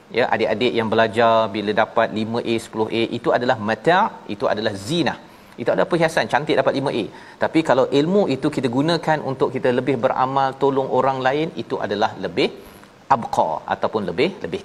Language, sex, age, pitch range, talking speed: Malayalam, male, 40-59, 115-140 Hz, 165 wpm